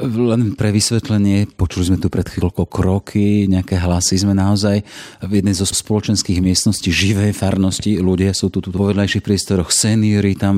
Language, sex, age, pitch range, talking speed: Slovak, male, 40-59, 95-110 Hz, 165 wpm